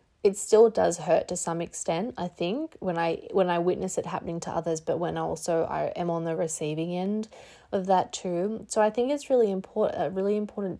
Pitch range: 165-200 Hz